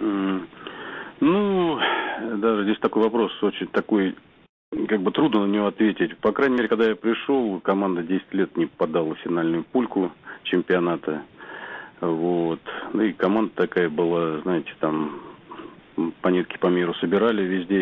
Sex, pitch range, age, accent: male, 85-95 Hz, 40-59, native